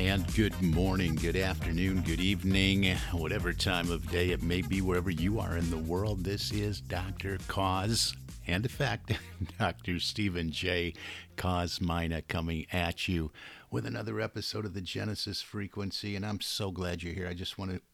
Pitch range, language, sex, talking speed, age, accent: 85-100 Hz, English, male, 175 wpm, 50-69, American